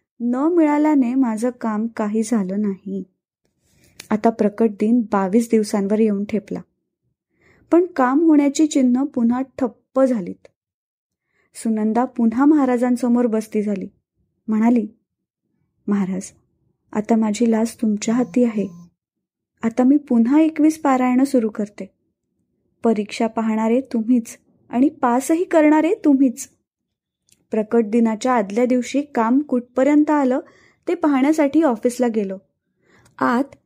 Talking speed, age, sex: 105 wpm, 20-39, female